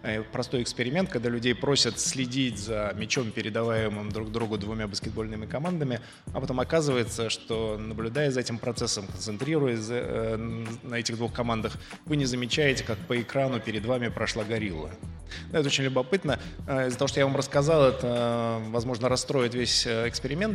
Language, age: Russian, 20-39